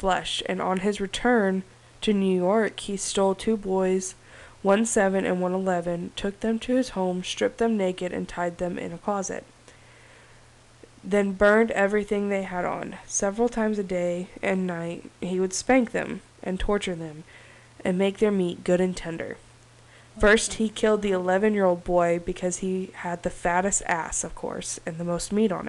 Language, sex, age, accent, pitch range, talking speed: English, female, 20-39, American, 175-205 Hz, 180 wpm